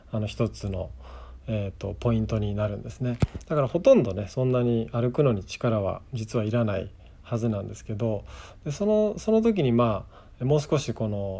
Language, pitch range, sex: Japanese, 105-140 Hz, male